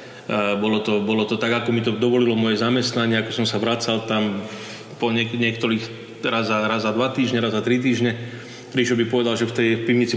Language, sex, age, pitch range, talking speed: Slovak, male, 30-49, 115-130 Hz, 200 wpm